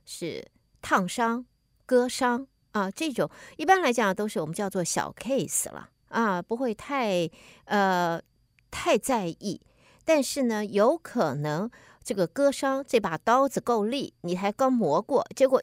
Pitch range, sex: 180-245 Hz, female